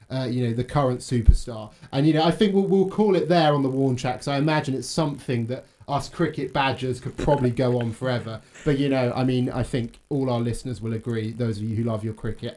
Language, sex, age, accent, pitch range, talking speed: English, male, 30-49, British, 125-155 Hz, 255 wpm